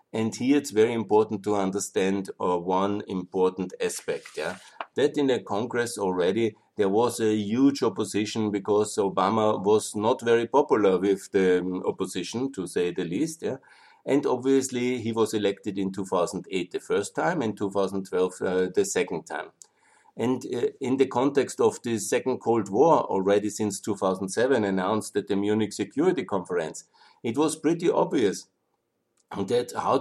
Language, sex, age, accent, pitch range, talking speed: German, male, 50-69, German, 100-130 Hz, 155 wpm